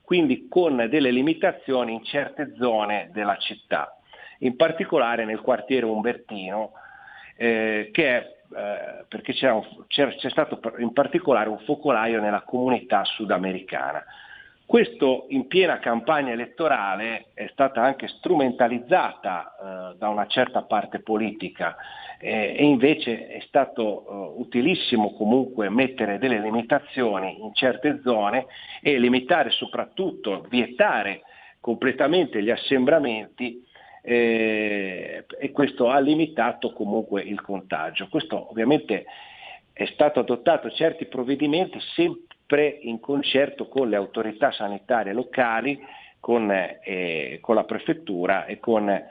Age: 40-59